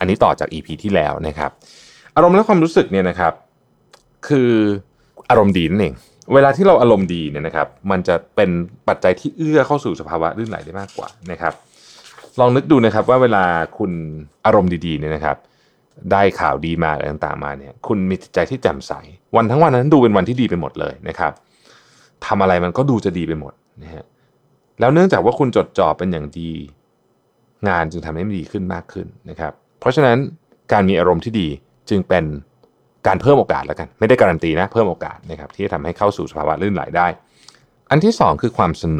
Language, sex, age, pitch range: Thai, male, 20-39, 80-115 Hz